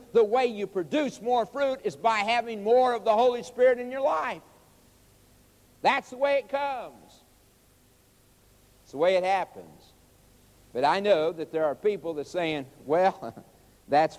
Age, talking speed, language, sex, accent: 60-79, 165 wpm, English, male, American